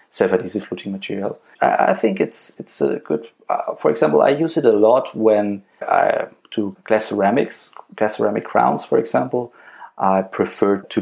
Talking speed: 165 wpm